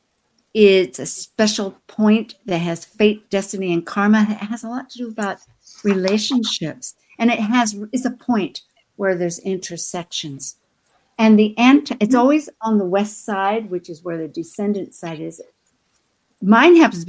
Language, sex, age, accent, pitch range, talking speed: English, female, 60-79, American, 170-240 Hz, 160 wpm